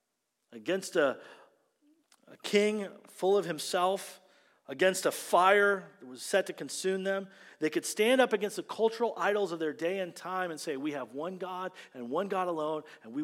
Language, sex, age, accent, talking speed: English, male, 40-59, American, 185 wpm